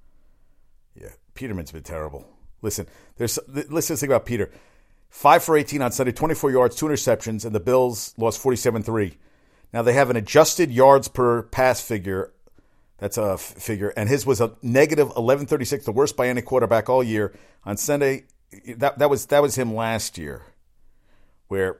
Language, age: English, 50-69